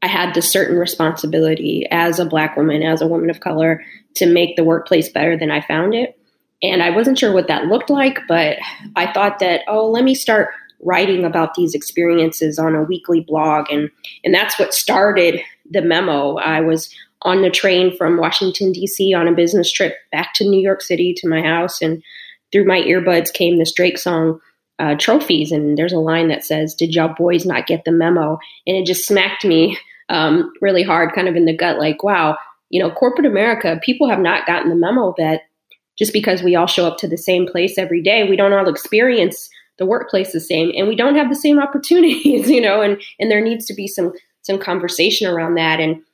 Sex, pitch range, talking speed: female, 165-195 Hz, 215 wpm